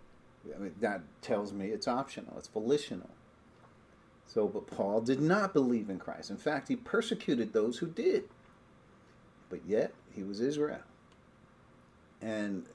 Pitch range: 95-130 Hz